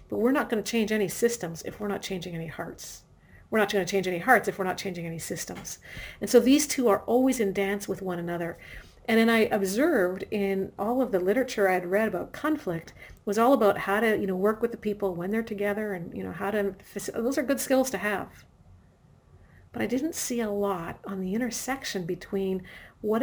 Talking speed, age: 225 wpm, 50-69